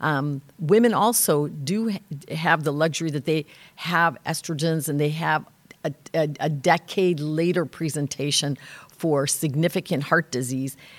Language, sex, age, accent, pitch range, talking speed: English, female, 50-69, American, 150-175 Hz, 135 wpm